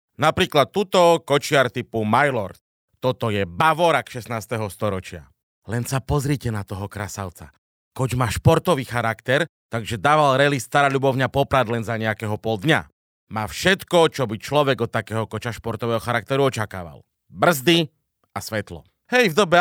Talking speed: 145 wpm